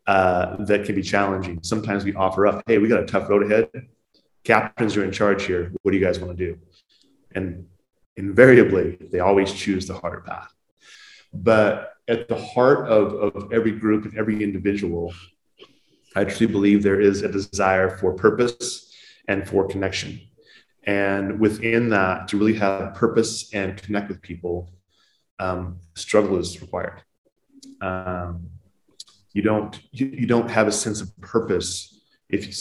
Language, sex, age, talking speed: English, male, 30-49, 160 wpm